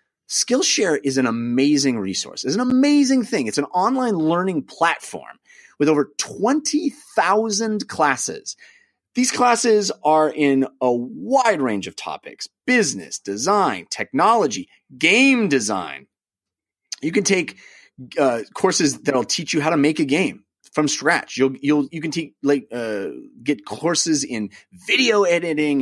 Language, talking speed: English, 140 wpm